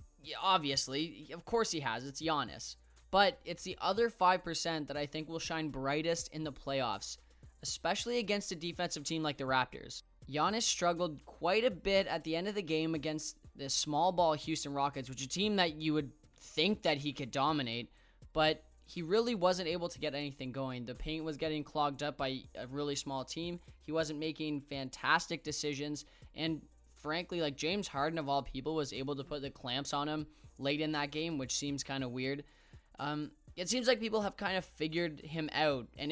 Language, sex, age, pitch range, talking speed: English, male, 10-29, 130-160 Hz, 200 wpm